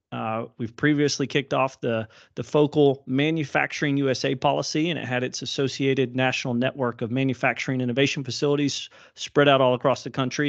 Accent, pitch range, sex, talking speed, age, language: American, 120-140 Hz, male, 160 wpm, 30-49, English